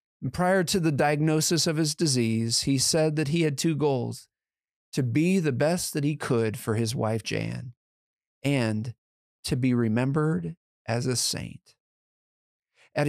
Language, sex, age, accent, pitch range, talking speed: English, male, 40-59, American, 120-155 Hz, 150 wpm